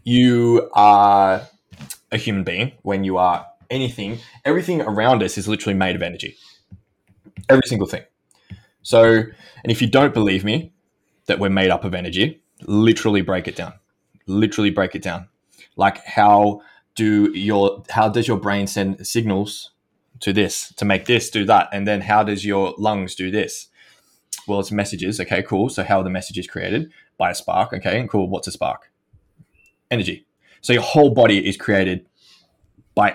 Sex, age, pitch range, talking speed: male, 20-39, 100-120 Hz, 170 wpm